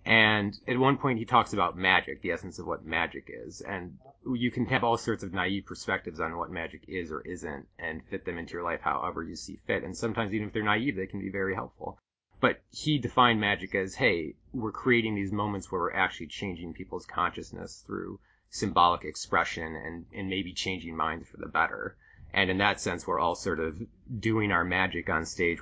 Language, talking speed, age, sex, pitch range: English, 210 wpm, 30-49, male, 85-105 Hz